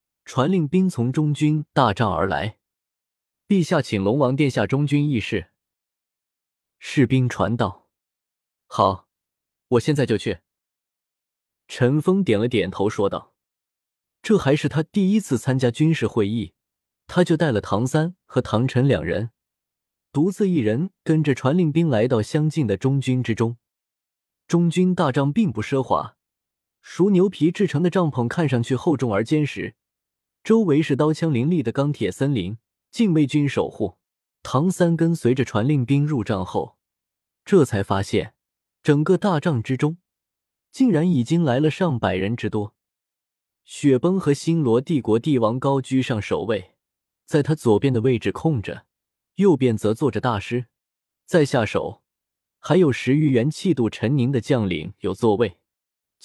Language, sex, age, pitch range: Chinese, male, 20-39, 115-160 Hz